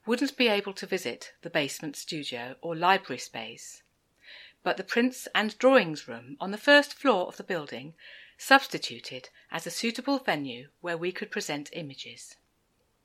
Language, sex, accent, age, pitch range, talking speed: English, female, British, 50-69, 170-240 Hz, 155 wpm